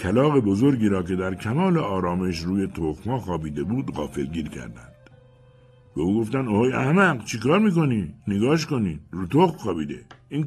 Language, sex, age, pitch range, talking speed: Persian, male, 60-79, 90-125 Hz, 150 wpm